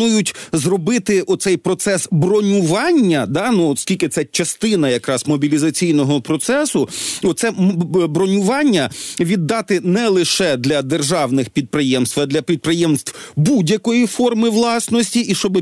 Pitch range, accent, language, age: 155-200 Hz, native, Ukrainian, 40-59